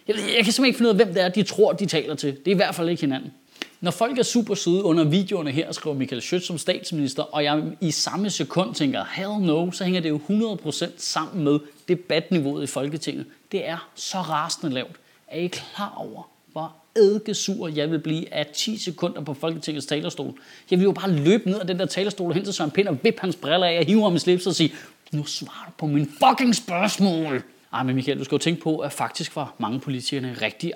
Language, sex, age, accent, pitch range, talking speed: Danish, male, 30-49, native, 150-200 Hz, 230 wpm